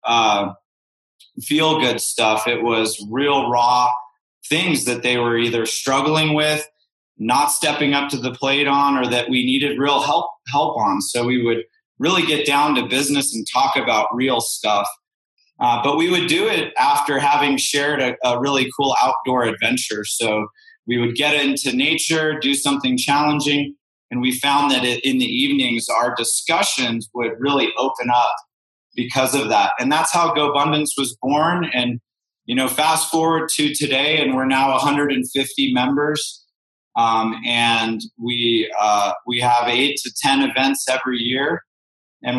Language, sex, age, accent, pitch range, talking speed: English, male, 30-49, American, 120-150 Hz, 165 wpm